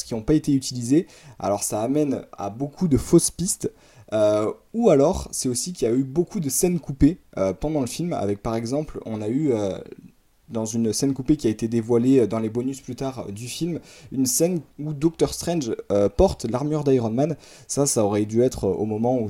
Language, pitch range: French, 110-140 Hz